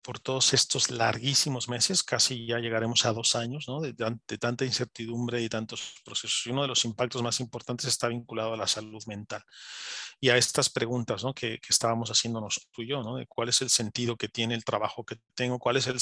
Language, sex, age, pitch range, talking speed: Spanish, male, 40-59, 115-135 Hz, 225 wpm